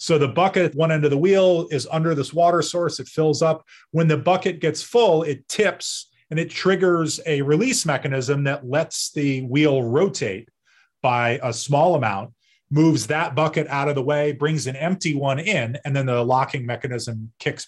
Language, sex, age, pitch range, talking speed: English, male, 30-49, 125-160 Hz, 195 wpm